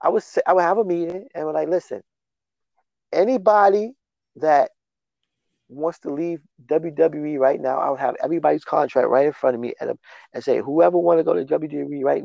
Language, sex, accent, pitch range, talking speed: English, male, American, 140-200 Hz, 200 wpm